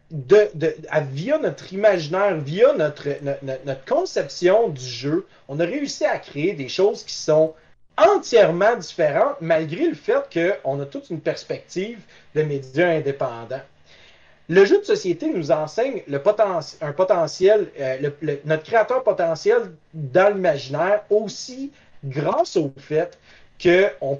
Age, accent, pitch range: 30-49, Canadian, 155-255 Hz